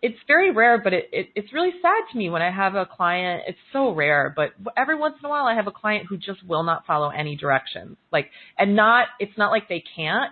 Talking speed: 255 wpm